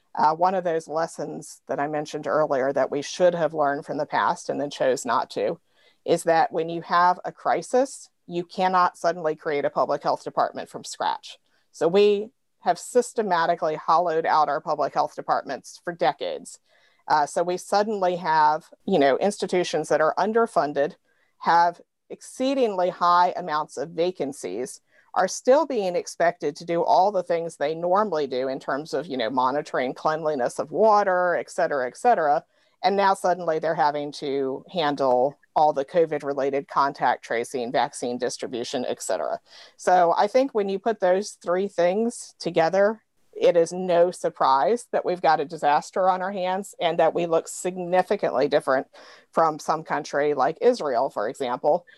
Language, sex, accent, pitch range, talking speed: English, female, American, 155-195 Hz, 165 wpm